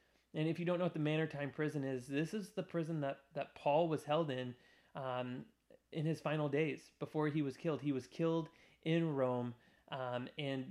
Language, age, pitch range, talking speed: English, 30-49, 130-160 Hz, 205 wpm